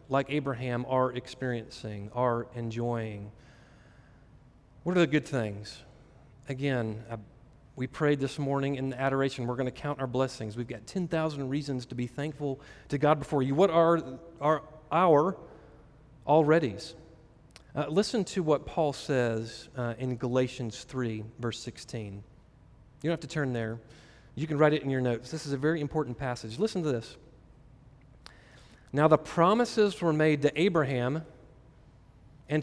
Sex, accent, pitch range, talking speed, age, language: male, American, 125-155 Hz, 150 wpm, 40-59, English